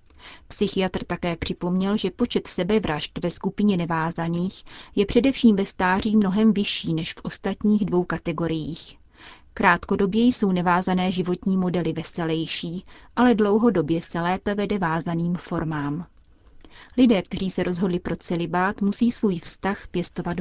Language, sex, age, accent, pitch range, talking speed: Czech, female, 30-49, native, 170-205 Hz, 125 wpm